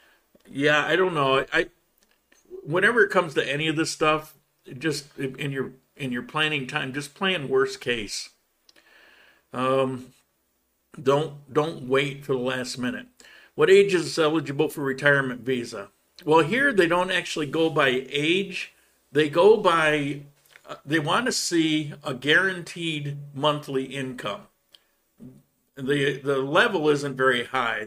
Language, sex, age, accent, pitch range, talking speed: English, male, 50-69, American, 130-160 Hz, 140 wpm